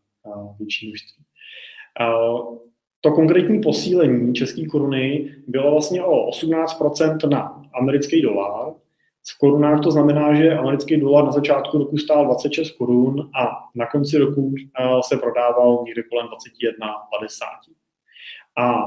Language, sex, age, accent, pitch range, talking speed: Czech, male, 30-49, native, 120-150 Hz, 115 wpm